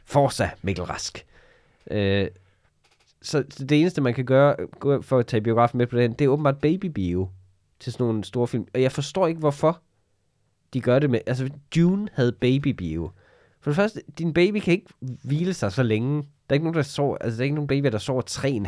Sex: male